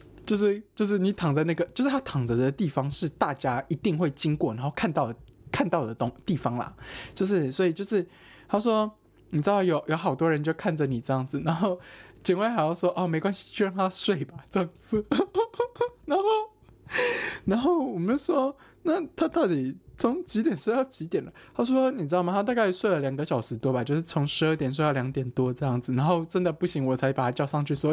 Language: Chinese